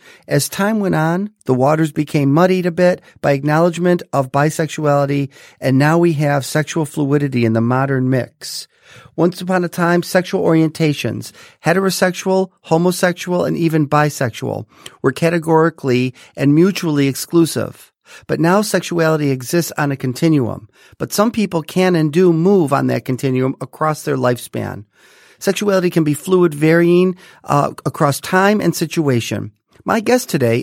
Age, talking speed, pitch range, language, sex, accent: 40-59, 145 wpm, 140-180 Hz, English, male, American